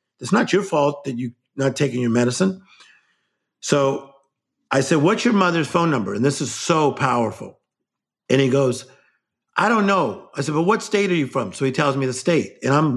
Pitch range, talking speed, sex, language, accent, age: 130-170 Hz, 215 wpm, male, English, American, 50-69